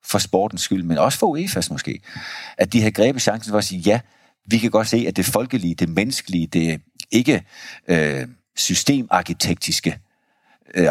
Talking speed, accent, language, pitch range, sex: 170 wpm, native, Danish, 80-100 Hz, male